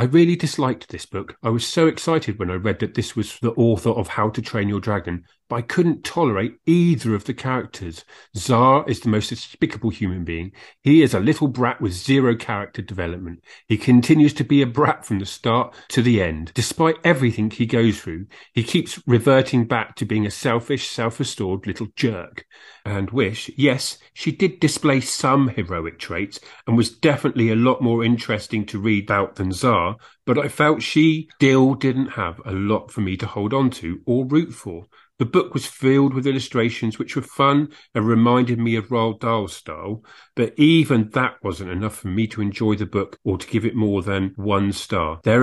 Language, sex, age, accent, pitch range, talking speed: English, male, 40-59, British, 105-130 Hz, 200 wpm